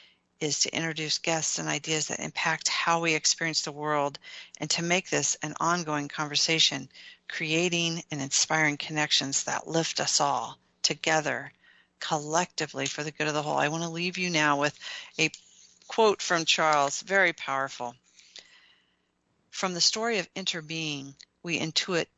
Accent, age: American, 50-69